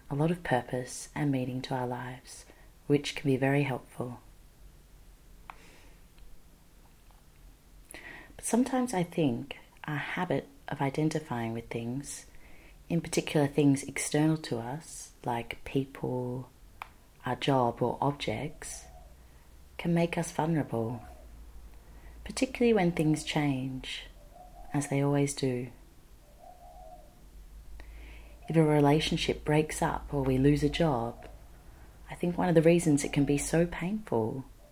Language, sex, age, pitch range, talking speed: English, female, 30-49, 120-155 Hz, 120 wpm